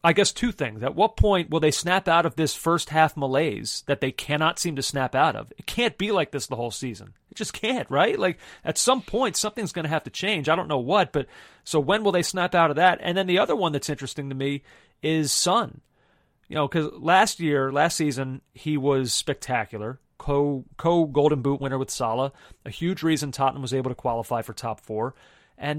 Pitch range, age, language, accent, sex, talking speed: 130-165 Hz, 30-49, English, American, male, 225 wpm